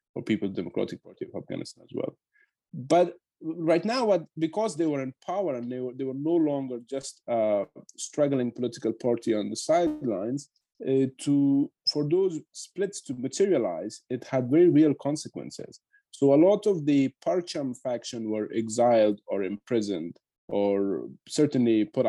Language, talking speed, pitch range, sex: English, 155 wpm, 115-155 Hz, male